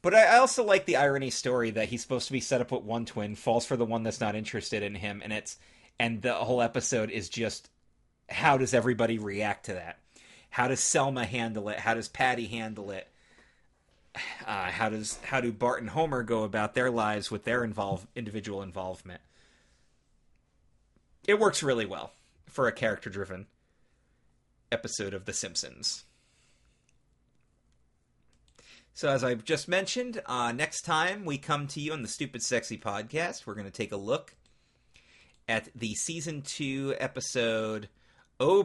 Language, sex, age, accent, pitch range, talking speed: English, male, 30-49, American, 100-130 Hz, 165 wpm